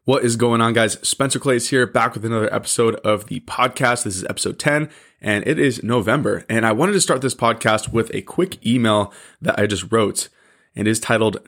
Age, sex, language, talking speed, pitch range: 20-39, male, English, 215 wpm, 105-130 Hz